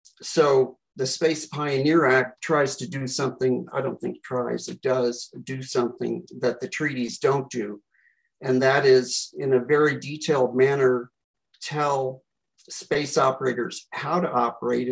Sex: male